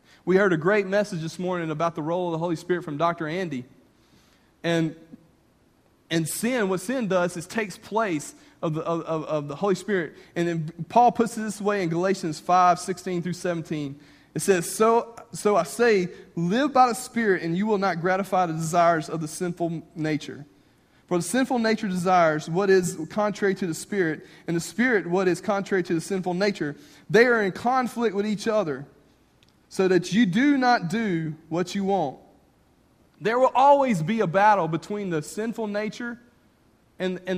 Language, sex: English, male